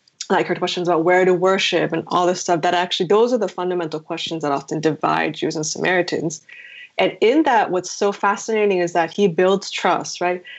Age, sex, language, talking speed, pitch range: 20-39, female, English, 205 wpm, 170-215 Hz